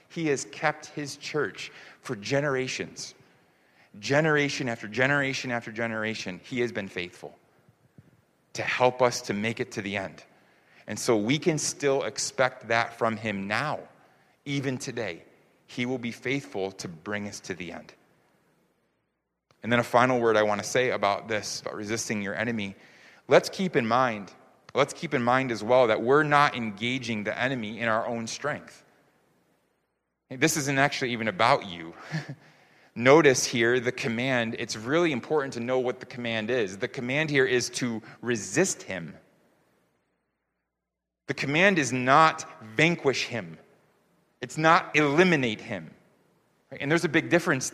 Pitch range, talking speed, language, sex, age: 115-145 Hz, 155 wpm, English, male, 30-49